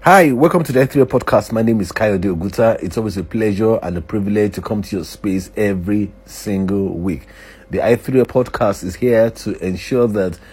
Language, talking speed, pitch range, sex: English, 195 wpm, 90-110 Hz, male